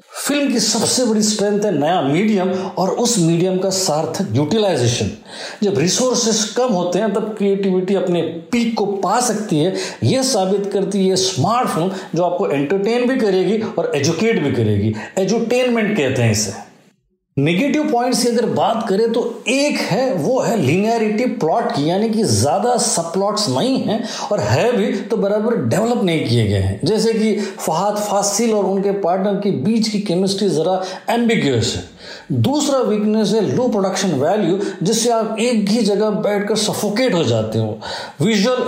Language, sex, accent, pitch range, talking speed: Hindi, male, native, 175-230 Hz, 165 wpm